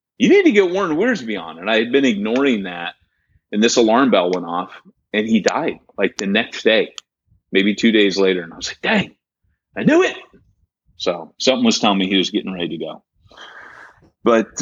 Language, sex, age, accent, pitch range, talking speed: English, male, 30-49, American, 95-135 Hz, 205 wpm